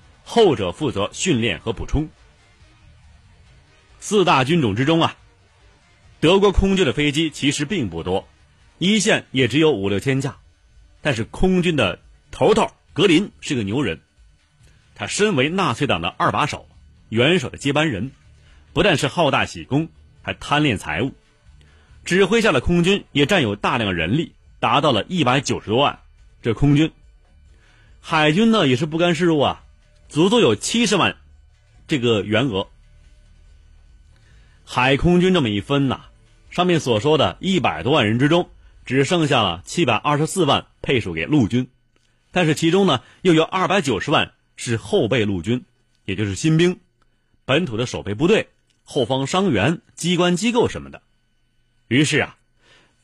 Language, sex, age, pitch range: Chinese, male, 30-49, 95-160 Hz